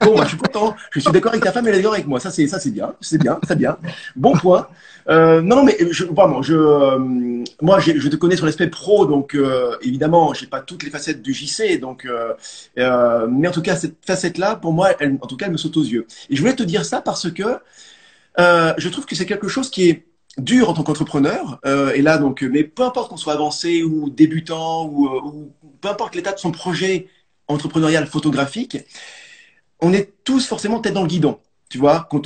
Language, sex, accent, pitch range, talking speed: French, male, French, 150-205 Hz, 235 wpm